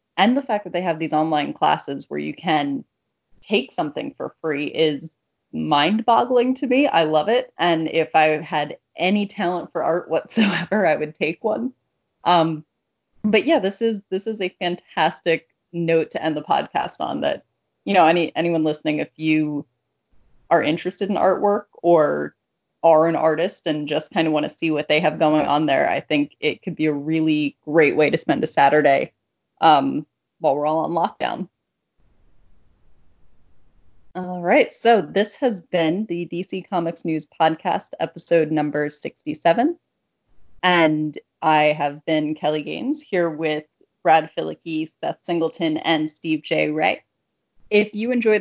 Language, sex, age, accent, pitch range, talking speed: English, female, 30-49, American, 155-190 Hz, 165 wpm